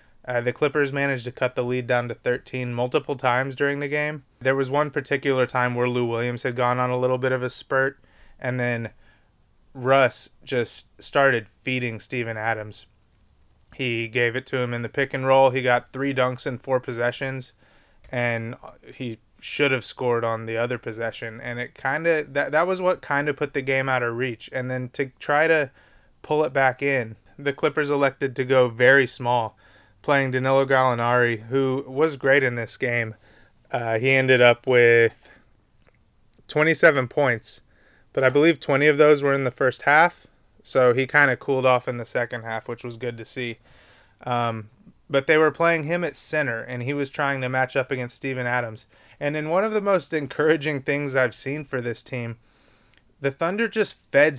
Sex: male